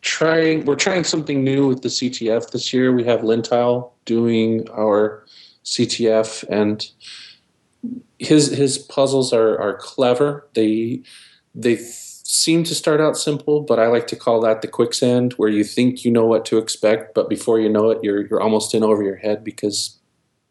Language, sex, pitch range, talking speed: English, male, 110-125 Hz, 175 wpm